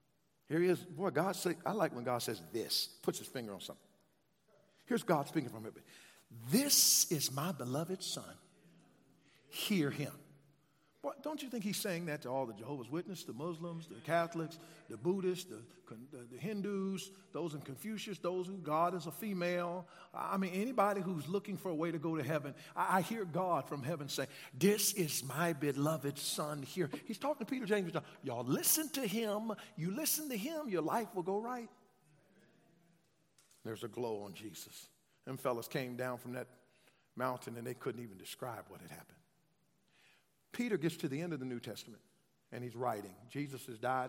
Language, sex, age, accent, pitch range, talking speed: English, male, 50-69, American, 130-195 Hz, 180 wpm